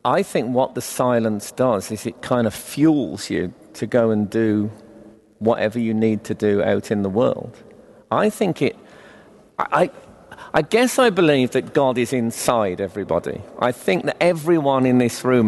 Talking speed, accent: 170 wpm, British